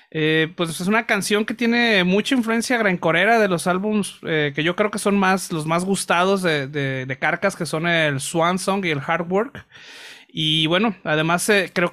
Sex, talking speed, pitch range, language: male, 210 wpm, 150-185 Hz, Spanish